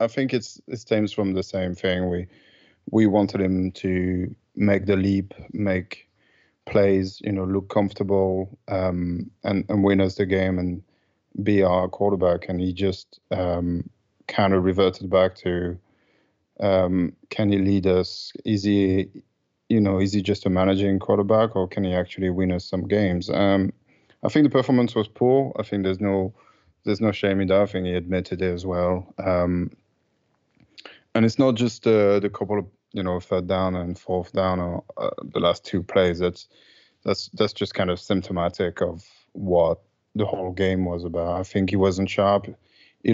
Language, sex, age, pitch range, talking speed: English, male, 20-39, 90-105 Hz, 185 wpm